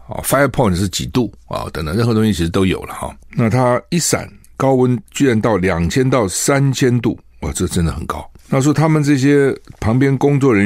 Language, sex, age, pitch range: Chinese, male, 60-79, 80-115 Hz